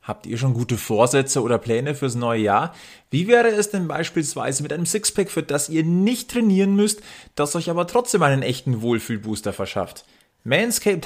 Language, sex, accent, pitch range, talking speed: German, male, German, 115-150 Hz, 180 wpm